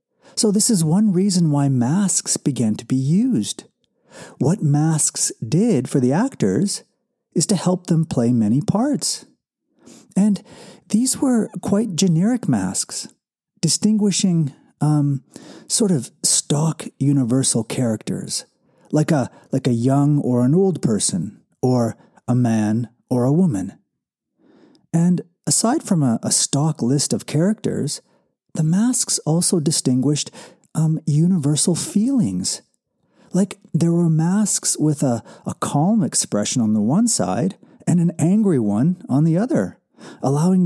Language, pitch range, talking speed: English, 140-205 Hz, 130 wpm